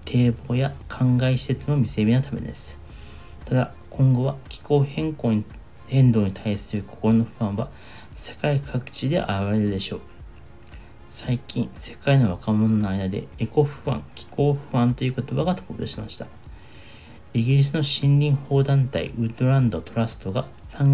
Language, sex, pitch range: Japanese, male, 100-125 Hz